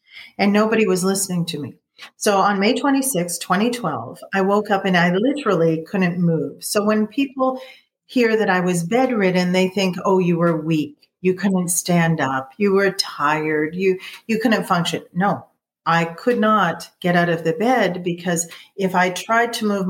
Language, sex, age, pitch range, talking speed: English, female, 40-59, 165-205 Hz, 180 wpm